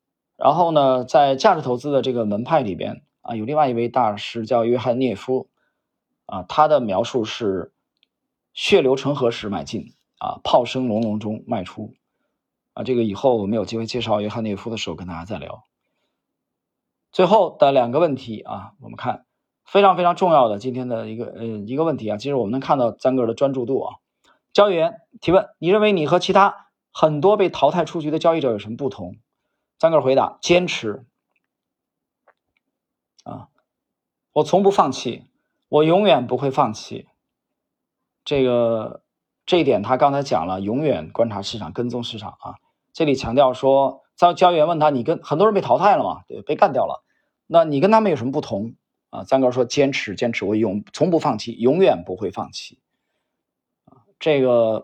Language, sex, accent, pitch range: Chinese, male, native, 115-160 Hz